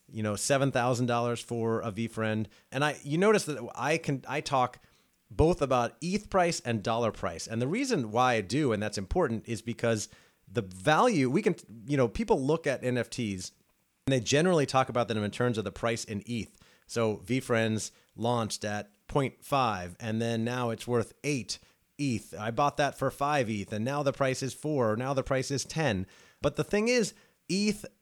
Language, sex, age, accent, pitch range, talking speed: English, male, 30-49, American, 110-140 Hz, 195 wpm